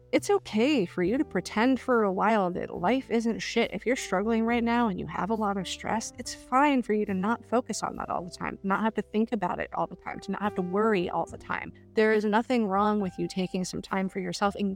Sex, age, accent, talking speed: female, 30-49, American, 270 wpm